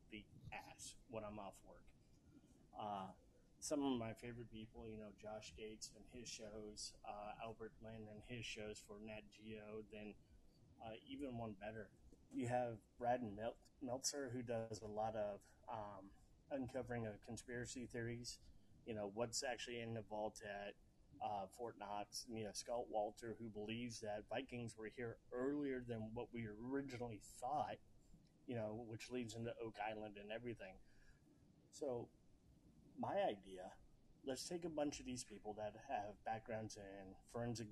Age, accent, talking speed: 30-49, American, 155 wpm